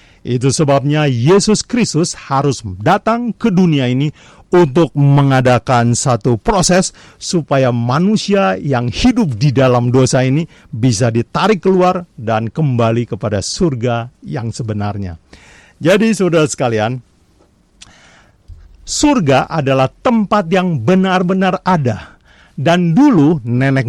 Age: 50-69